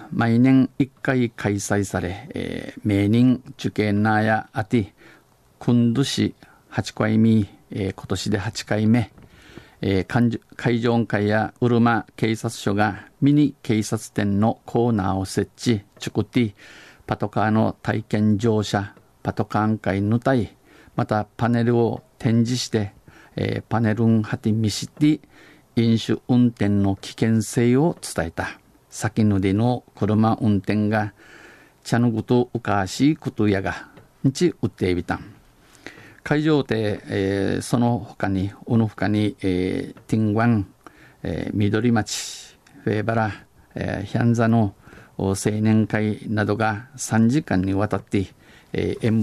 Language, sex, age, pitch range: Japanese, male, 50-69, 105-120 Hz